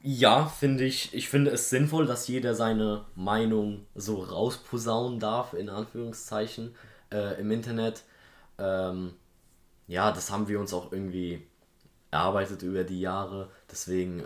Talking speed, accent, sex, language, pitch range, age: 135 wpm, German, male, German, 95-125 Hz, 20-39